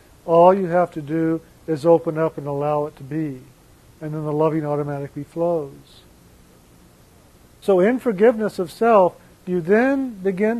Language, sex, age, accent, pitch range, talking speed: English, male, 50-69, American, 150-185 Hz, 155 wpm